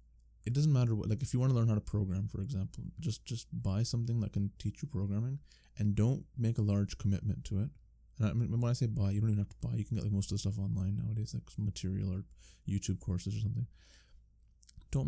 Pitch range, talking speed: 95-110 Hz, 250 wpm